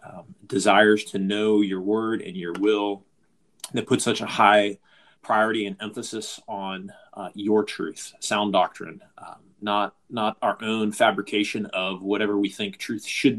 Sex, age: male, 30-49